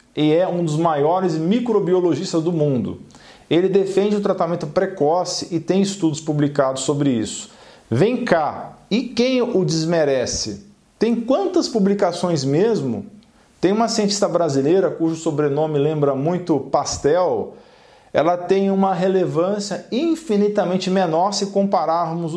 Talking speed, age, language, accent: 125 wpm, 40-59, Portuguese, Brazilian